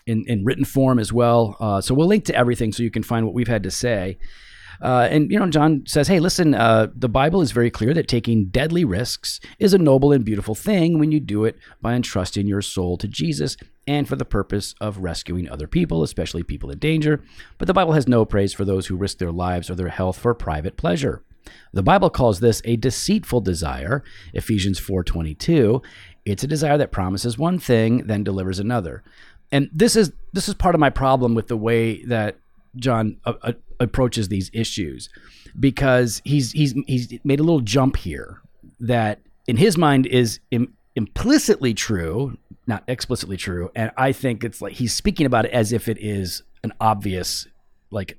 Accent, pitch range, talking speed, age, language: American, 100-135 Hz, 200 wpm, 40-59, English